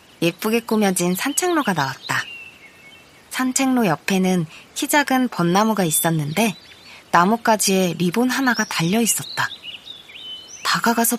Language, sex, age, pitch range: Korean, female, 20-39, 175-250 Hz